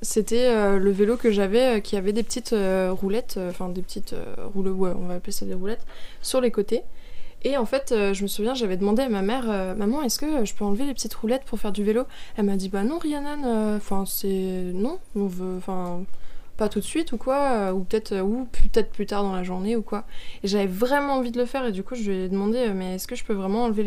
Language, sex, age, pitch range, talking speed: French, female, 20-39, 195-235 Hz, 270 wpm